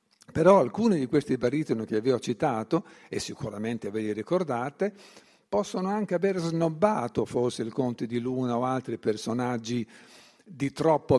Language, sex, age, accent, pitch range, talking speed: Italian, male, 50-69, native, 115-155 Hz, 150 wpm